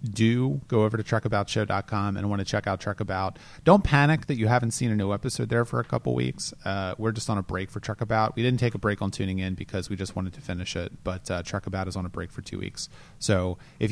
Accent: American